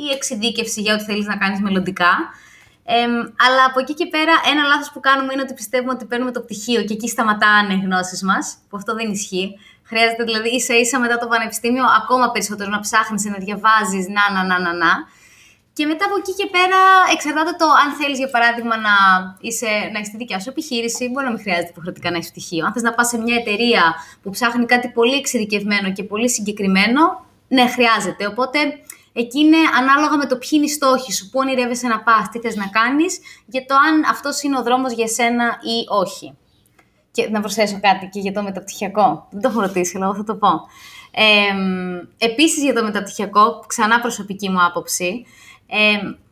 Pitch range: 205-265 Hz